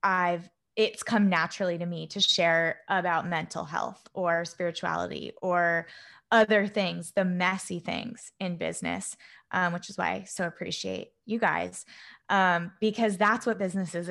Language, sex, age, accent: English, female, 20-39, American